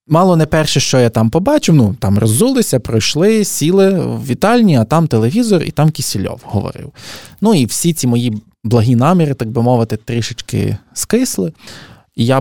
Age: 20-39